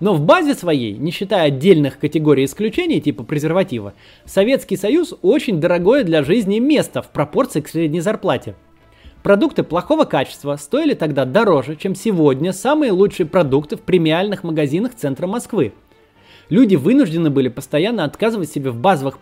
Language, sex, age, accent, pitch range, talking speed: Russian, male, 20-39, native, 145-200 Hz, 145 wpm